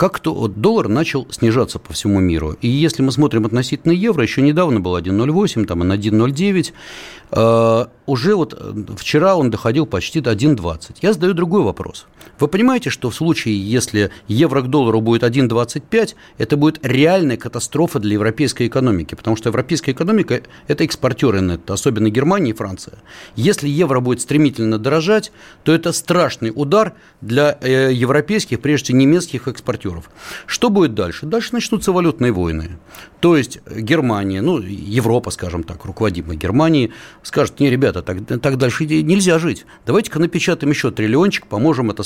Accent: native